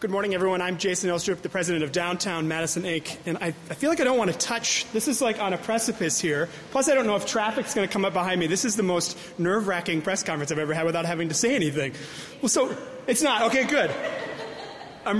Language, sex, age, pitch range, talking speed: English, male, 30-49, 165-215 Hz, 250 wpm